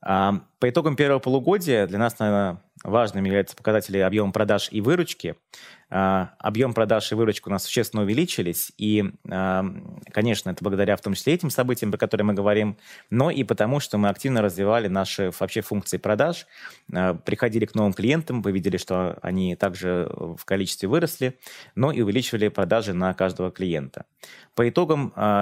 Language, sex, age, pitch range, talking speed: Russian, male, 20-39, 95-120 Hz, 160 wpm